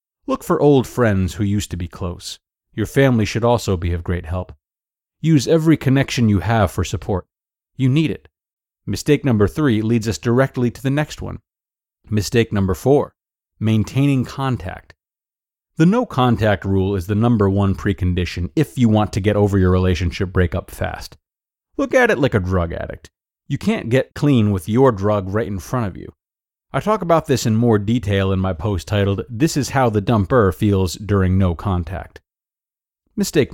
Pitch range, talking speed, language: 95-135 Hz, 180 wpm, English